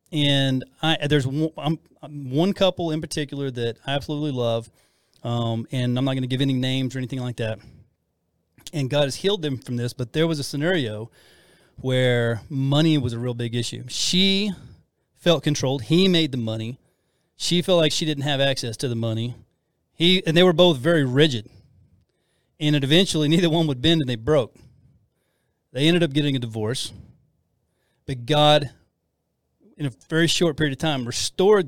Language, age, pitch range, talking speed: English, 30-49, 125-155 Hz, 180 wpm